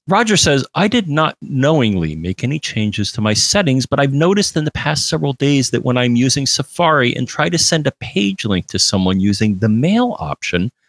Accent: American